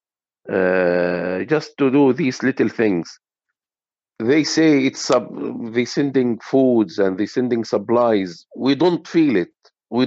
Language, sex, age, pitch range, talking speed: English, male, 50-69, 105-140 Hz, 130 wpm